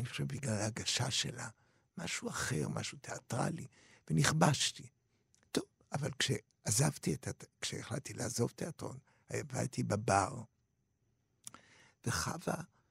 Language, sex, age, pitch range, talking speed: Hebrew, male, 60-79, 110-145 Hz, 100 wpm